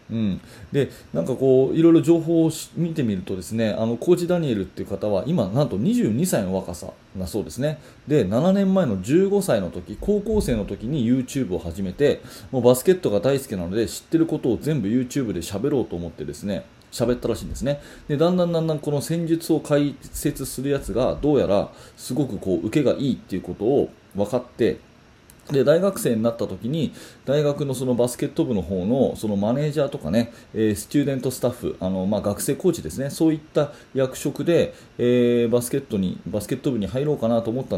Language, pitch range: Japanese, 110-155 Hz